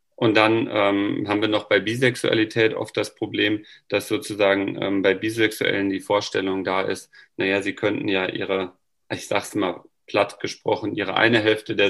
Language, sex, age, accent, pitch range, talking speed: German, male, 40-59, German, 100-115 Hz, 175 wpm